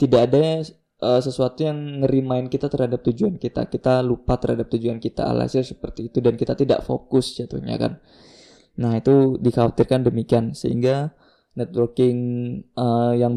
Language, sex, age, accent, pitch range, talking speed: Indonesian, male, 20-39, native, 120-130 Hz, 145 wpm